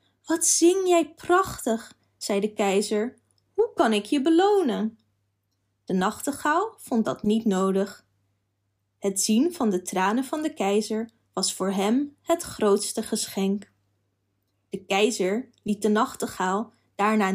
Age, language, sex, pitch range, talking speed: 20-39, Dutch, female, 195-270 Hz, 130 wpm